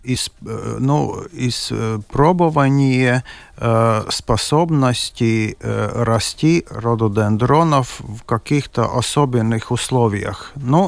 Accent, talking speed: native, 75 wpm